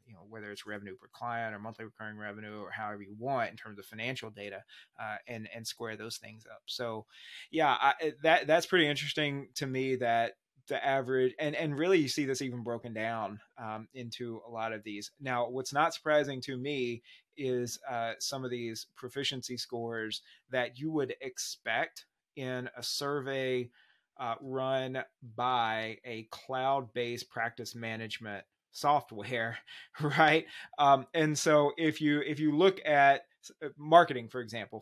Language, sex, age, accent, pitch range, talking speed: English, male, 30-49, American, 115-145 Hz, 165 wpm